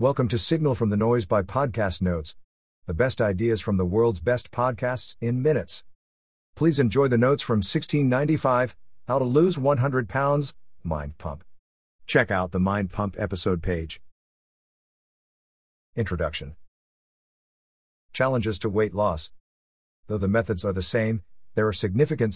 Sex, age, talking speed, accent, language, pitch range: male, 50-69, 140 wpm, American, English, 85-125 Hz